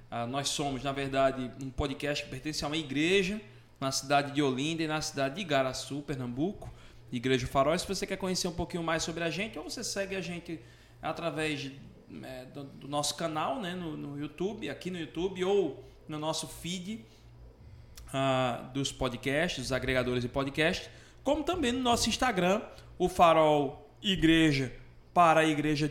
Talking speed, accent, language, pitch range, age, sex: 170 wpm, Brazilian, Portuguese, 140-185 Hz, 20-39, male